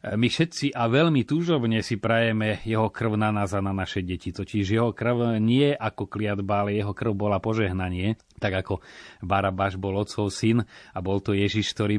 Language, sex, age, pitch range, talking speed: Slovak, male, 30-49, 100-115 Hz, 185 wpm